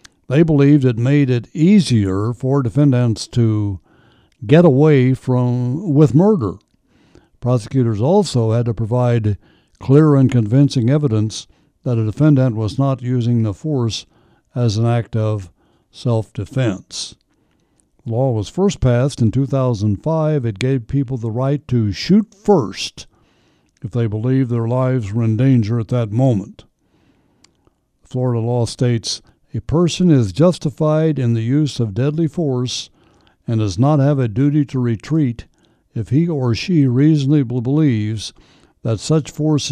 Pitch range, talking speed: 115-140 Hz, 140 wpm